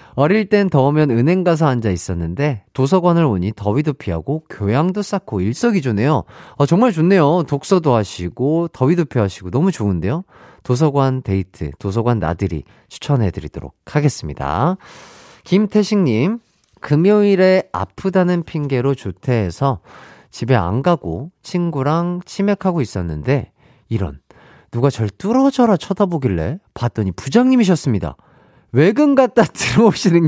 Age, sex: 40-59, male